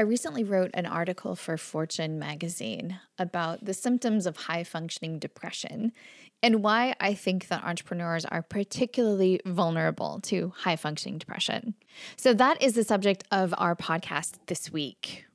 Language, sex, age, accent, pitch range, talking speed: English, female, 10-29, American, 170-210 Hz, 140 wpm